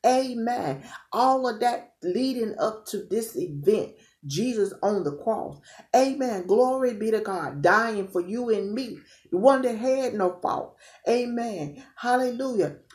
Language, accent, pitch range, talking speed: English, American, 195-245 Hz, 145 wpm